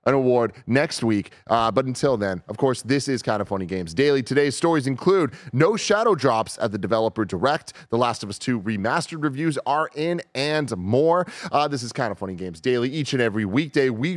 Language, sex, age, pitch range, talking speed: English, male, 30-49, 110-150 Hz, 215 wpm